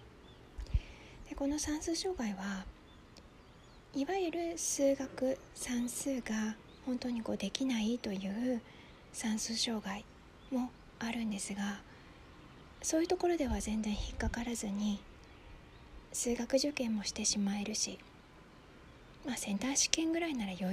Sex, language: female, Japanese